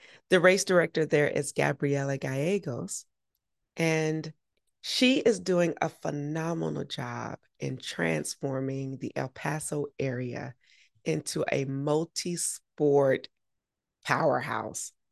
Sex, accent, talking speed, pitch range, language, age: female, American, 95 wpm, 135-190 Hz, English, 30-49